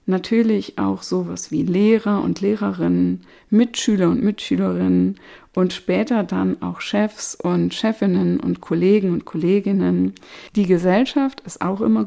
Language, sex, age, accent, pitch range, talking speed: German, female, 50-69, German, 170-215 Hz, 130 wpm